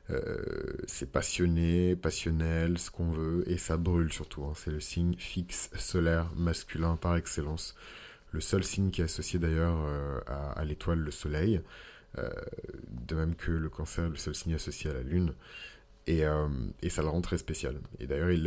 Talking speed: 185 wpm